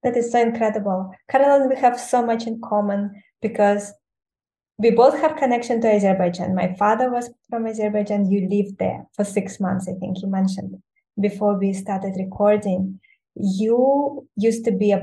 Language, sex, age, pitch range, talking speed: English, female, 20-39, 190-225 Hz, 170 wpm